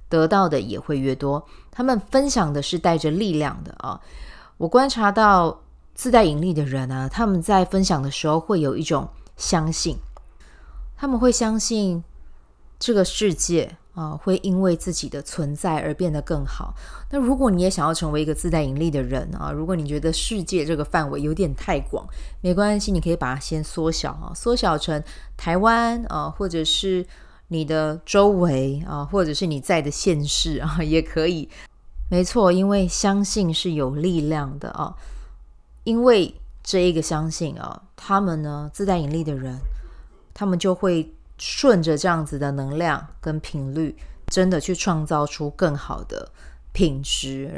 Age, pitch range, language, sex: 20-39, 145-185 Hz, Chinese, female